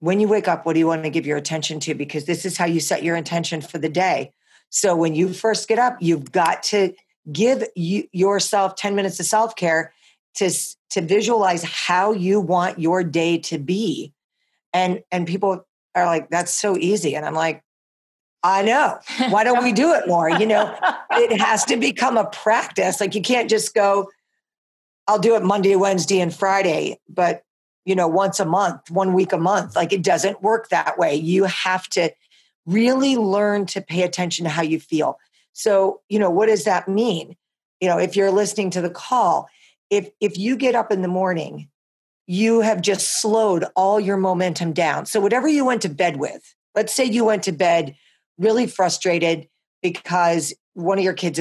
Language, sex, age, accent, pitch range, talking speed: English, female, 50-69, American, 170-210 Hz, 195 wpm